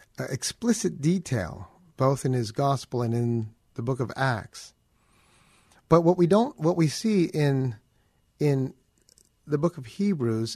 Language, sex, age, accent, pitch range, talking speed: English, male, 50-69, American, 115-155 Hz, 140 wpm